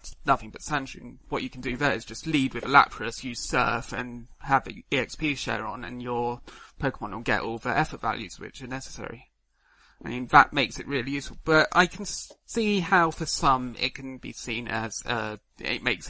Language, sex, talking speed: English, male, 215 wpm